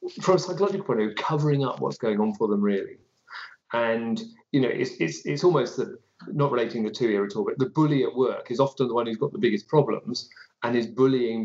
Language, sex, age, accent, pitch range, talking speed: English, male, 40-59, British, 115-155 Hz, 240 wpm